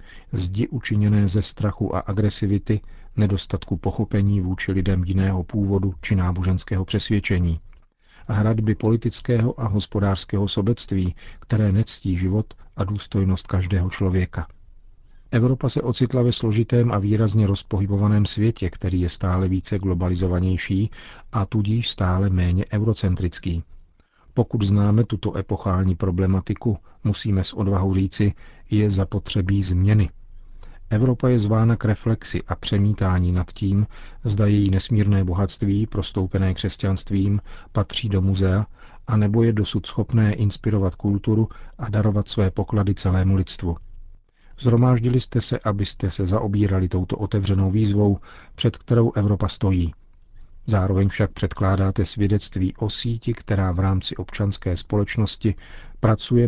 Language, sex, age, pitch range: Czech, male, 40-59, 95-110 Hz